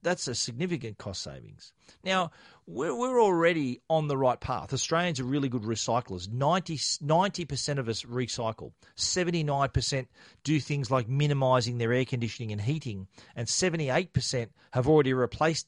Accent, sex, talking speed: Australian, male, 140 wpm